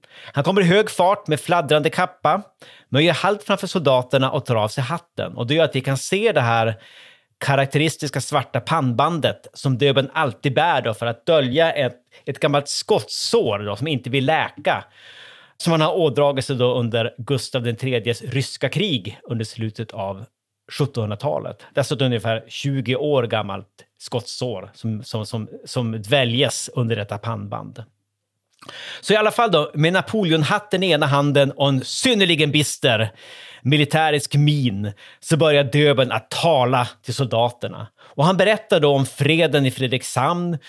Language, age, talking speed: Swedish, 30-49, 160 wpm